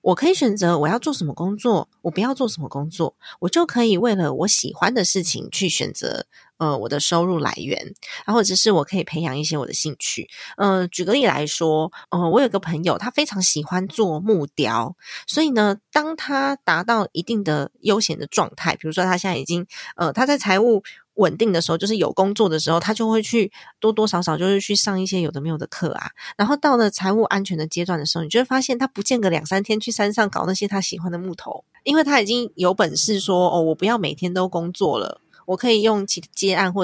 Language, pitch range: Chinese, 170-220 Hz